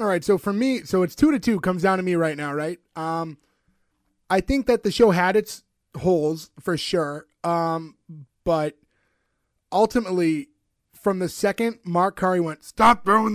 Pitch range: 165-210 Hz